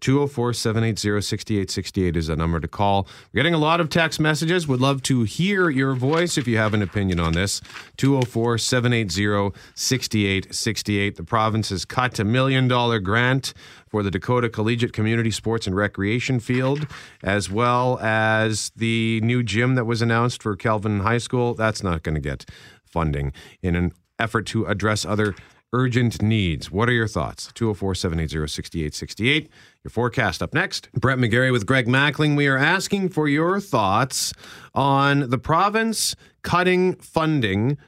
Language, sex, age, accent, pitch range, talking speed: English, male, 40-59, American, 100-130 Hz, 150 wpm